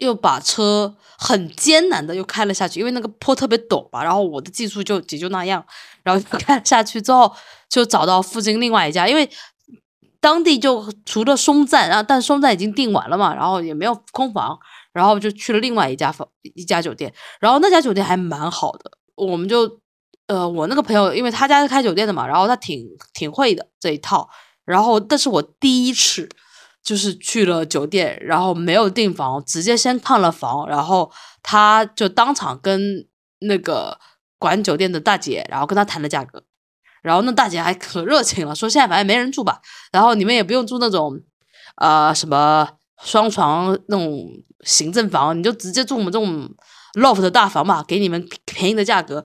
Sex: female